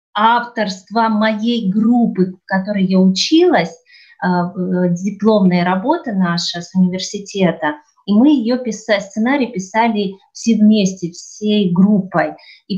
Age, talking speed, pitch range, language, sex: 30-49, 110 wpm, 185-225 Hz, Russian, female